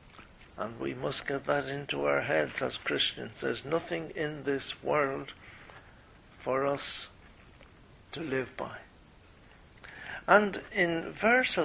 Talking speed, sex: 120 wpm, male